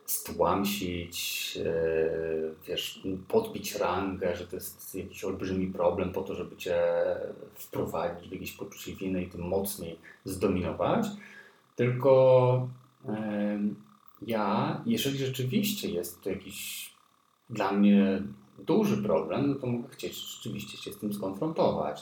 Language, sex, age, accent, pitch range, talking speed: Polish, male, 30-49, native, 95-125 Hz, 120 wpm